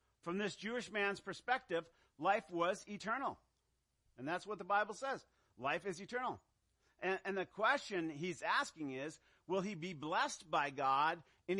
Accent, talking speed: American, 160 wpm